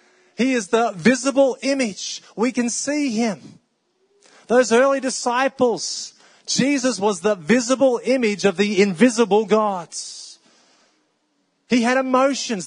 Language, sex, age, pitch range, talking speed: English, male, 30-49, 185-245 Hz, 115 wpm